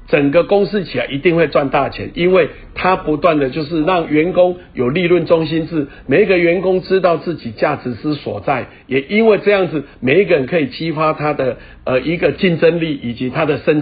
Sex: male